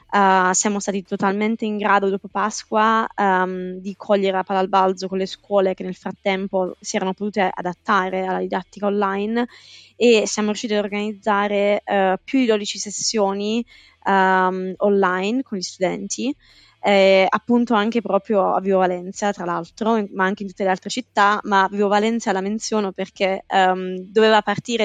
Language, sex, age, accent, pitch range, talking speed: Italian, female, 20-39, native, 190-210 Hz, 160 wpm